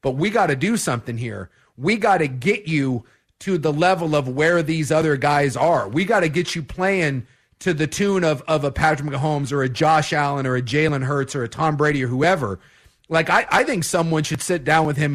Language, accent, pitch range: English, American, 135-180 Hz